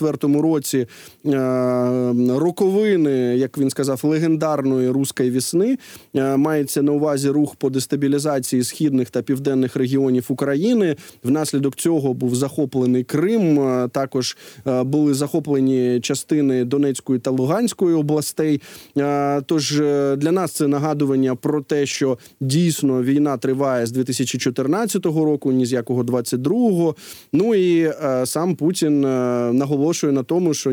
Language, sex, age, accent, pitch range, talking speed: Ukrainian, male, 20-39, native, 130-155 Hz, 115 wpm